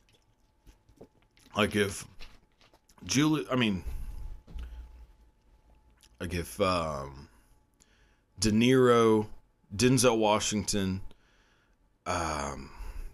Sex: male